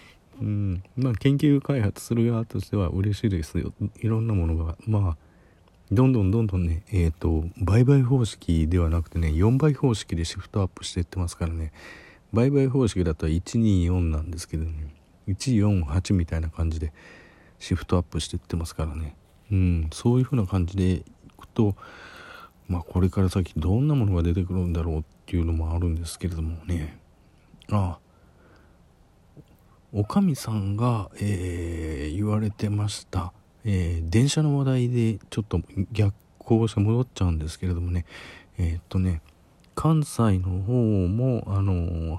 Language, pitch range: Japanese, 85-115 Hz